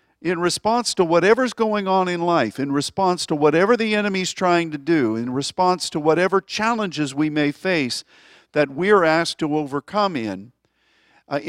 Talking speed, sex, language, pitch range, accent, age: 165 wpm, male, English, 130-180 Hz, American, 50-69